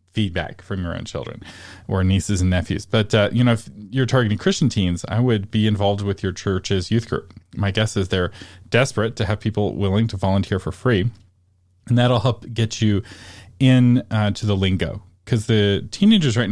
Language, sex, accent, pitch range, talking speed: English, male, American, 95-115 Hz, 195 wpm